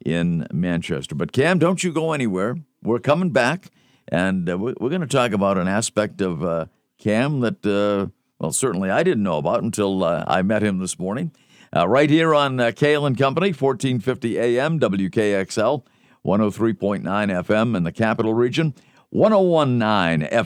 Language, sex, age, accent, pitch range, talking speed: English, male, 50-69, American, 110-145 Hz, 165 wpm